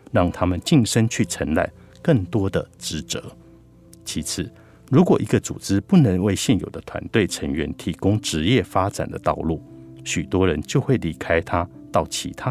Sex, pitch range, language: male, 85-115 Hz, Chinese